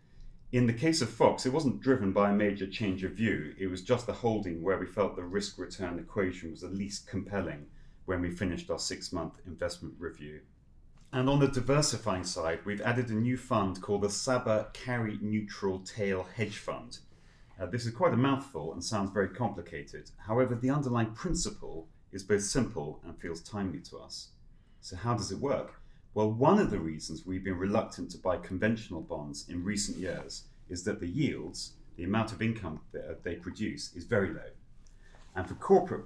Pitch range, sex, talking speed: 90-115 Hz, male, 190 wpm